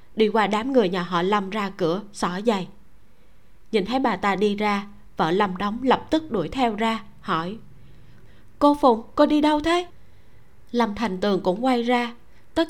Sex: female